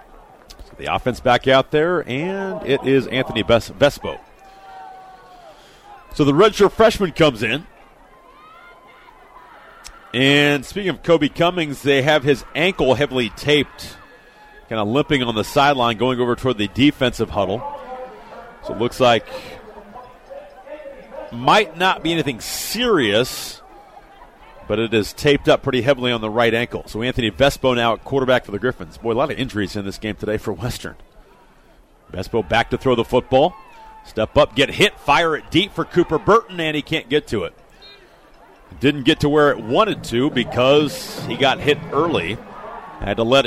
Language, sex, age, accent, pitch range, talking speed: English, male, 40-59, American, 120-160 Hz, 160 wpm